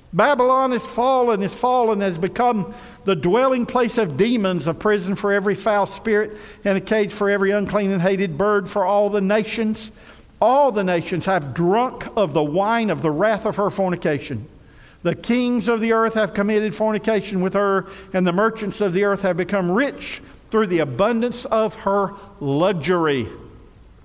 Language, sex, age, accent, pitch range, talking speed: English, male, 50-69, American, 190-230 Hz, 175 wpm